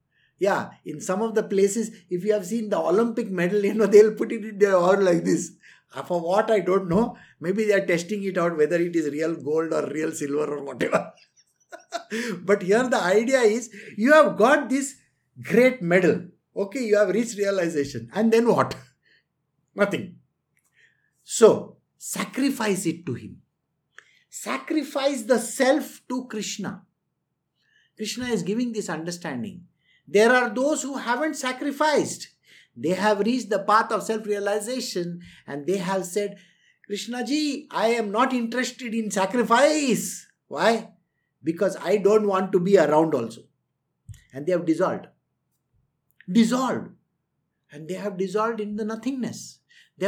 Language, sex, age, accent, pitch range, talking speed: English, male, 60-79, Indian, 180-235 Hz, 150 wpm